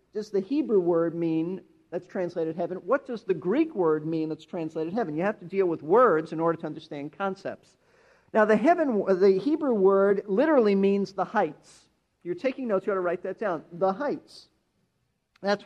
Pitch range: 170-220 Hz